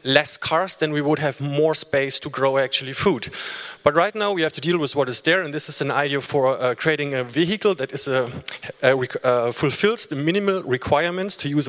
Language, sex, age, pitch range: English, male, 30-49, 130-160 Hz